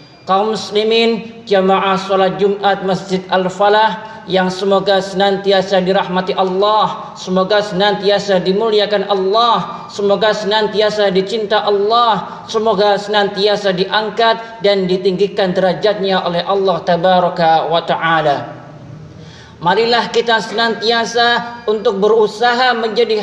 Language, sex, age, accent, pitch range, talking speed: Indonesian, male, 40-59, native, 195-225 Hz, 95 wpm